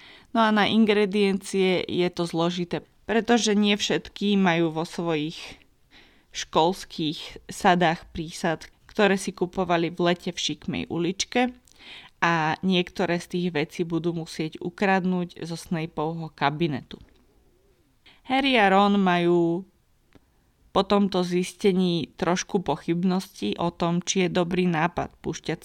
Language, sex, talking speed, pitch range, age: Slovak, female, 120 wpm, 165-190 Hz, 20-39